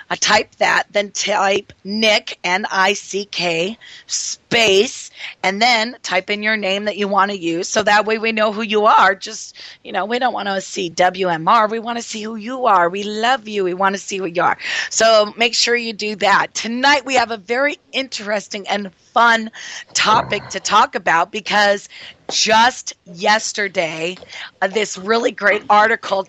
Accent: American